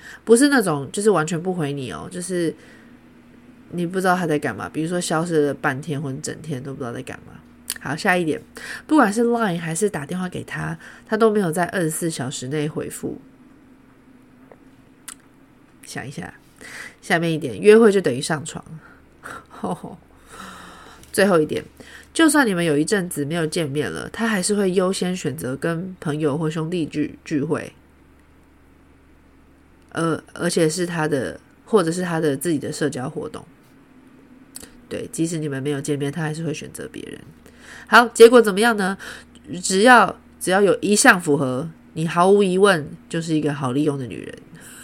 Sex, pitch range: female, 145-205 Hz